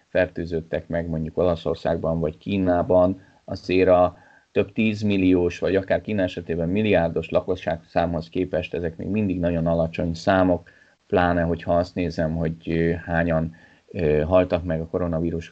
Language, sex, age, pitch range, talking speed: Hungarian, male, 30-49, 85-110 Hz, 135 wpm